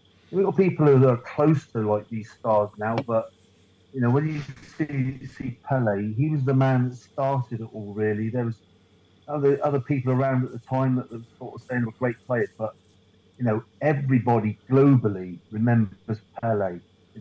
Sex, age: male, 40-59